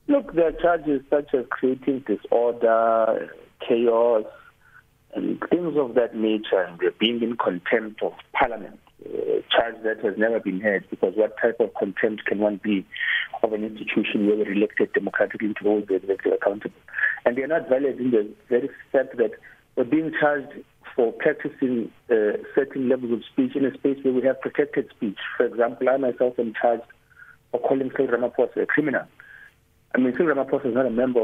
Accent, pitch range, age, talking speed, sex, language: South African, 110-140 Hz, 50-69, 180 wpm, male, English